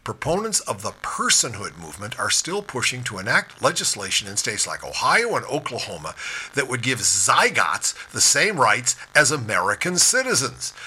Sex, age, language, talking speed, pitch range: male, 50-69, English, 150 wpm, 125-175 Hz